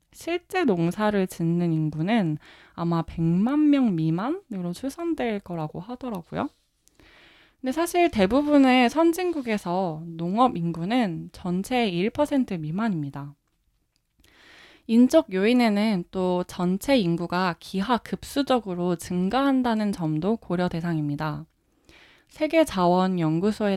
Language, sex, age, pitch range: Korean, female, 20-39, 170-250 Hz